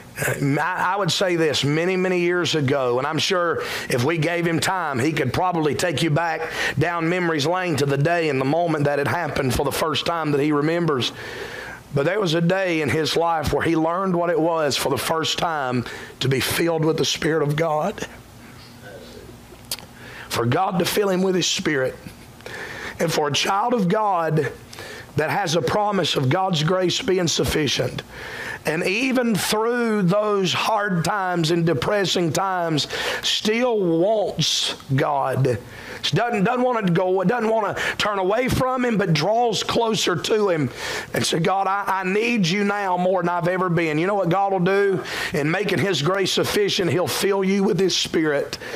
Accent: American